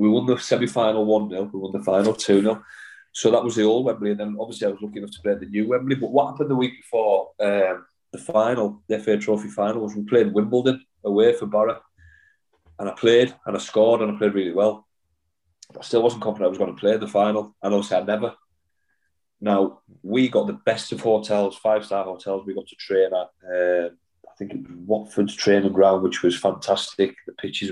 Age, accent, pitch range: 30-49, British, 95-110 Hz